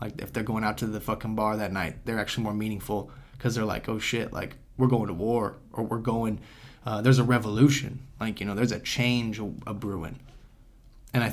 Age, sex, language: 20-39, male, English